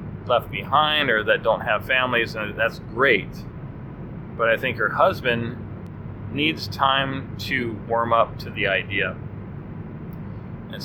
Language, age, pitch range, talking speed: English, 30-49, 110-135 Hz, 135 wpm